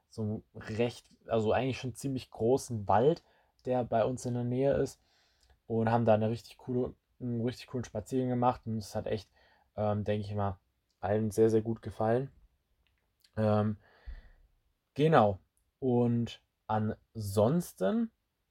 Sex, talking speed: male, 130 wpm